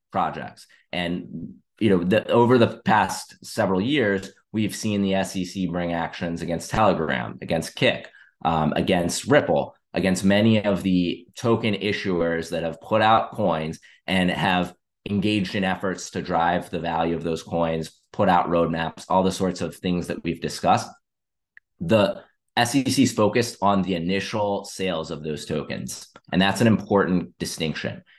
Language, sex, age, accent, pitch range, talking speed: English, male, 20-39, American, 85-100 Hz, 155 wpm